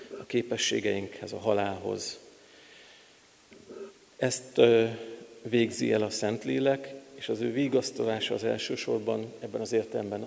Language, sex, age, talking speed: Hungarian, male, 50-69, 115 wpm